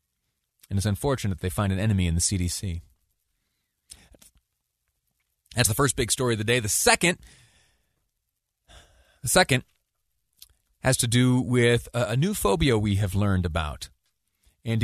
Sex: male